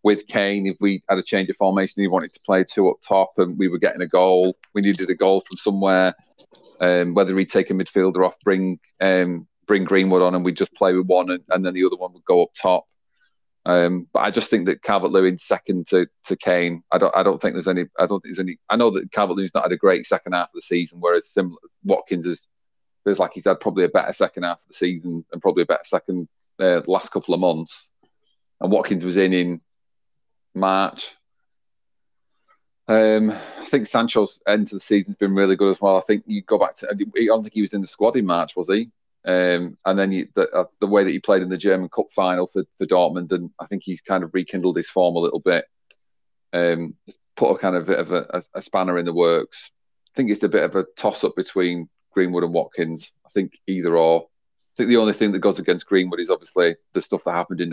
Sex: male